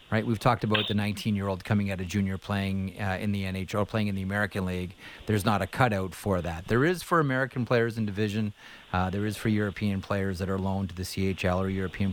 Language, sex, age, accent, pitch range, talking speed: English, male, 30-49, American, 100-120 Hz, 235 wpm